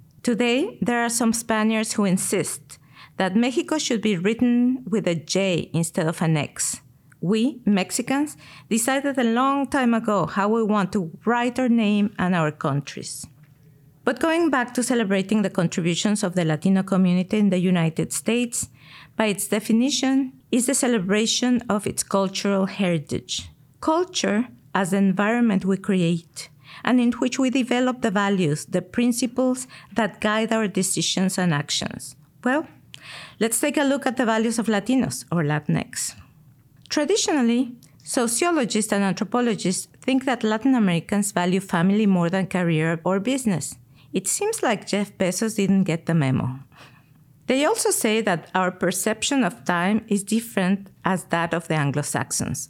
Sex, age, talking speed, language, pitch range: female, 50-69, 150 wpm, English, 175-240 Hz